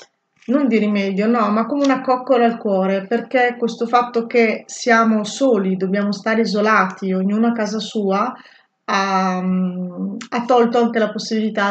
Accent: native